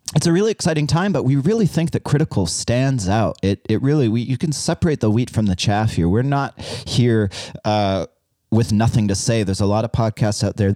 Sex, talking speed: male, 230 wpm